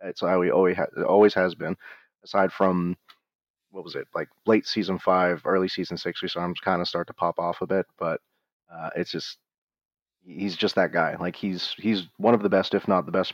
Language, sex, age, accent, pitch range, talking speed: English, male, 30-49, American, 90-100 Hz, 230 wpm